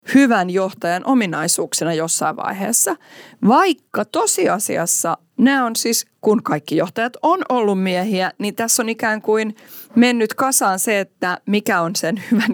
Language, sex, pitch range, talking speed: Finnish, female, 165-235 Hz, 140 wpm